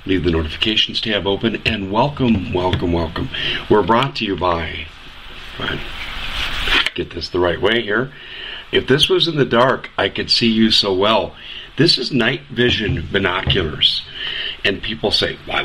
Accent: American